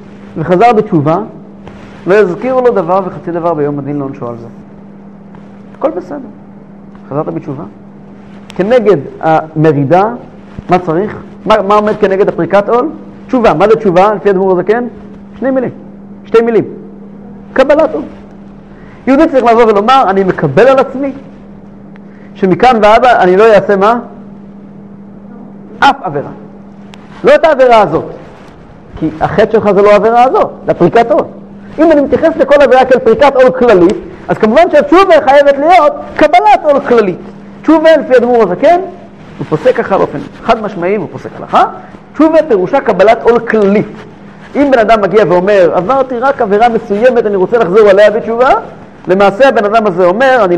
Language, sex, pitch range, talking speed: English, male, 195-240 Hz, 115 wpm